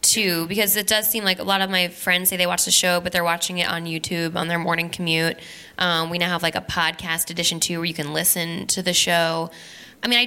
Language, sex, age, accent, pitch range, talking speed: English, female, 10-29, American, 160-185 Hz, 265 wpm